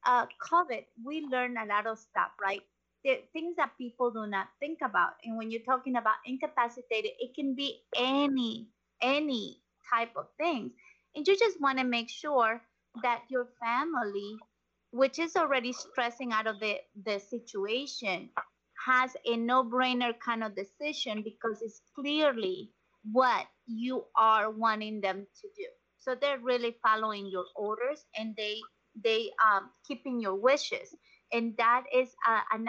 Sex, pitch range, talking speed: female, 220-275 Hz, 155 wpm